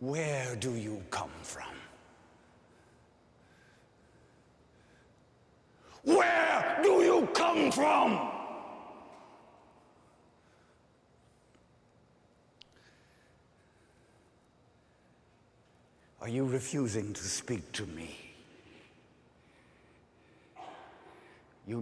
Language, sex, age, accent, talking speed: English, male, 60-79, American, 50 wpm